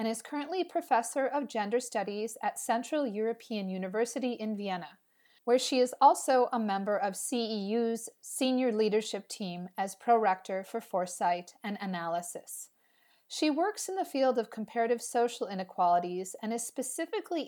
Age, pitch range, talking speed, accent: 40-59, 190-245 Hz, 145 wpm, American